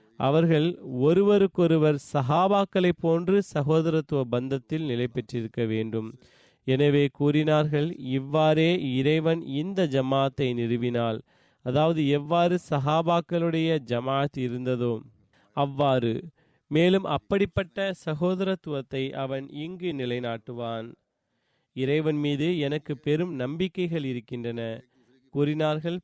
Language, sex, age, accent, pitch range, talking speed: Tamil, male, 30-49, native, 130-170 Hz, 80 wpm